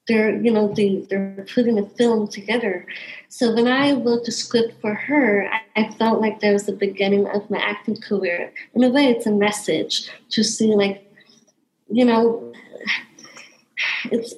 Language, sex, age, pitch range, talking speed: English, female, 20-39, 210-245 Hz, 170 wpm